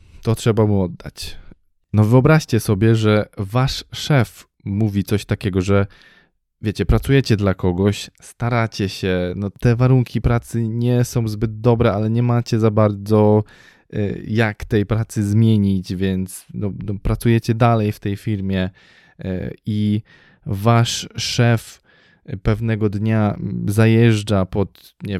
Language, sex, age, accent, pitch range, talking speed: Polish, male, 20-39, native, 100-115 Hz, 125 wpm